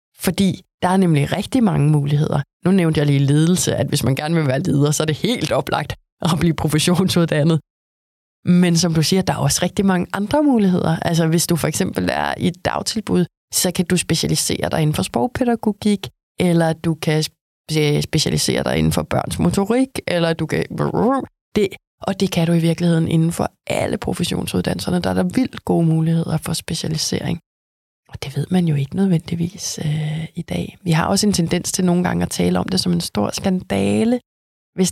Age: 20-39